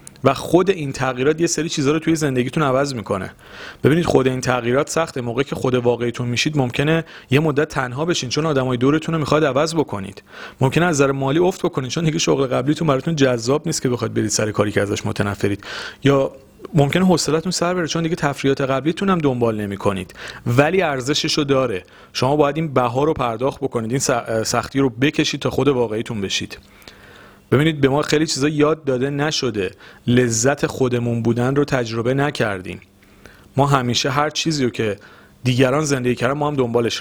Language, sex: Persian, male